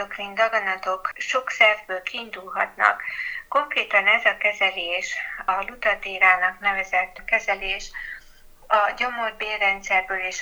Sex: female